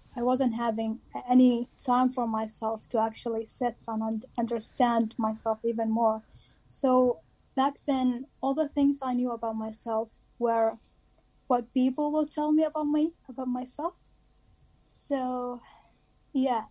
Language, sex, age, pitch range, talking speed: English, female, 10-29, 230-260 Hz, 135 wpm